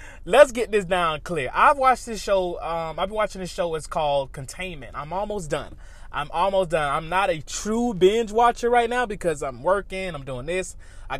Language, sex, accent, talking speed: English, male, American, 210 wpm